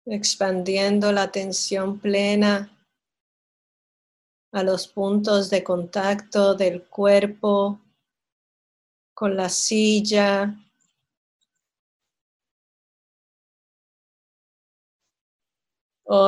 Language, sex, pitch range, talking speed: English, female, 195-220 Hz, 55 wpm